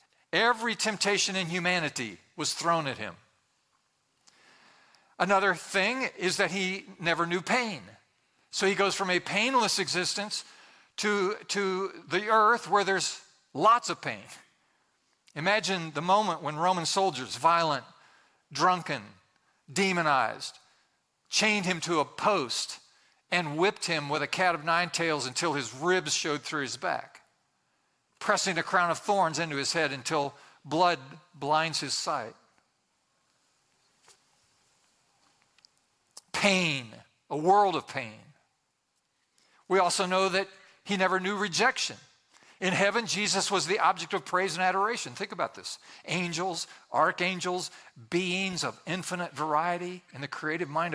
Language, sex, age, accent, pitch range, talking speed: English, male, 50-69, American, 155-195 Hz, 130 wpm